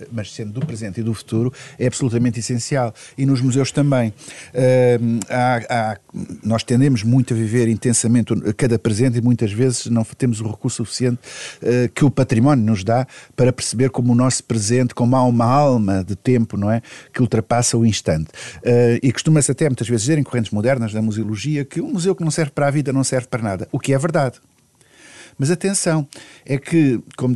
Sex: male